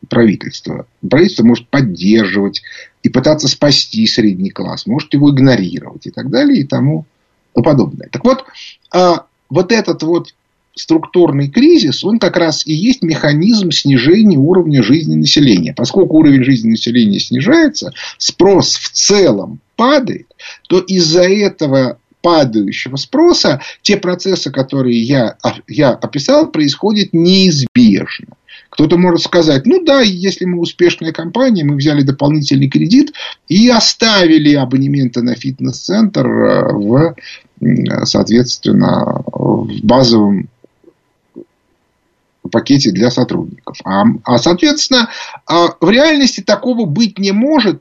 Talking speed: 115 wpm